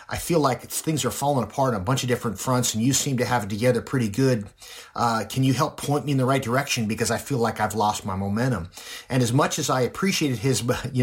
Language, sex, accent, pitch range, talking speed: English, male, American, 110-140 Hz, 265 wpm